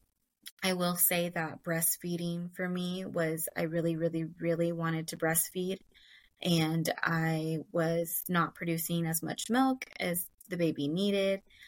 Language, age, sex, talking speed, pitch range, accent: English, 20-39, female, 140 wpm, 160-185 Hz, American